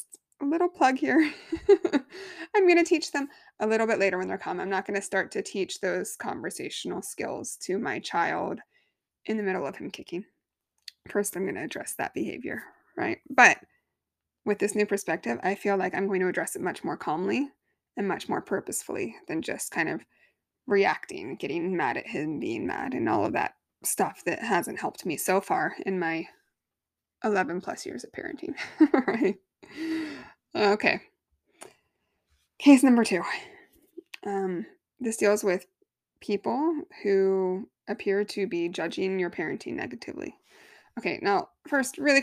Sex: female